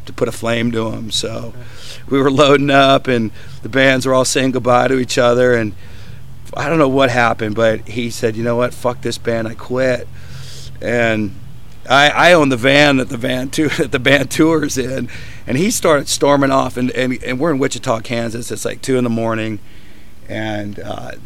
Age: 50-69